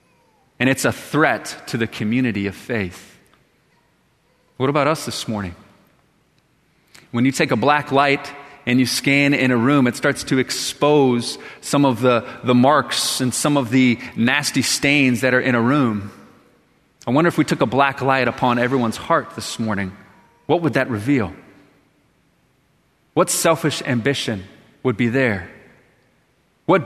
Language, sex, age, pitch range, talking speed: English, male, 30-49, 125-170 Hz, 155 wpm